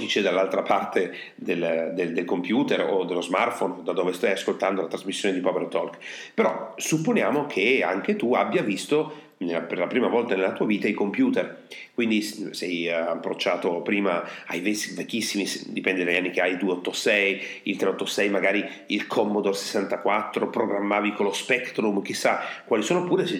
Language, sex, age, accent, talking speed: Italian, male, 40-59, native, 160 wpm